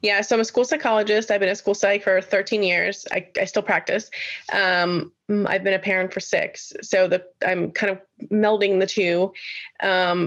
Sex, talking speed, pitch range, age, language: female, 200 wpm, 185-220 Hz, 20-39, English